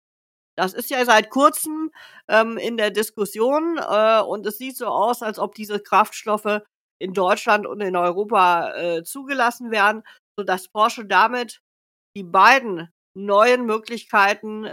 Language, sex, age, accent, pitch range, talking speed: German, female, 50-69, German, 200-240 Hz, 140 wpm